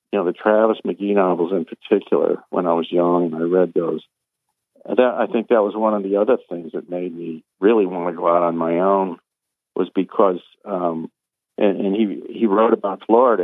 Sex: male